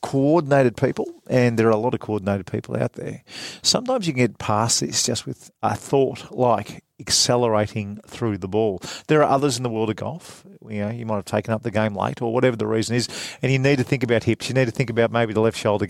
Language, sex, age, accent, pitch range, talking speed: English, male, 40-59, Australian, 110-130 Hz, 250 wpm